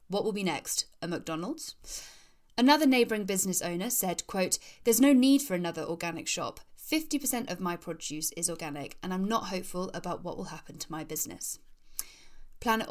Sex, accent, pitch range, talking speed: female, British, 170-235 Hz, 170 wpm